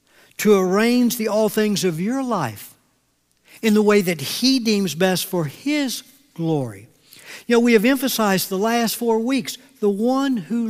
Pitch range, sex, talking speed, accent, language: 205-255 Hz, male, 170 wpm, American, English